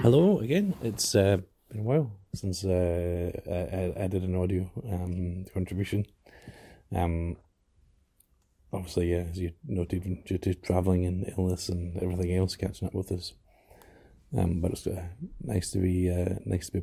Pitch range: 85-95 Hz